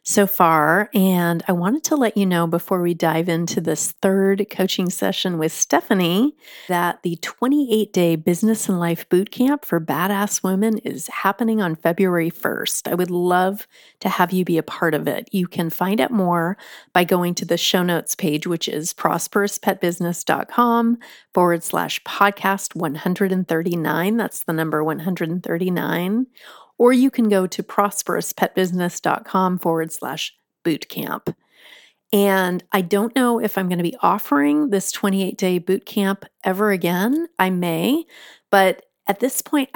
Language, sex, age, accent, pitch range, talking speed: English, female, 30-49, American, 175-220 Hz, 150 wpm